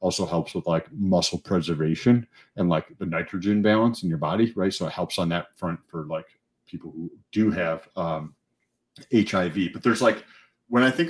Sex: male